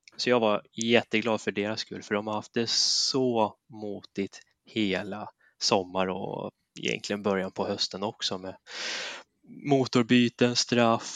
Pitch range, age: 105-130 Hz, 20-39